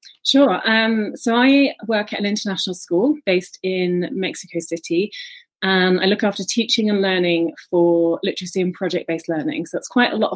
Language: English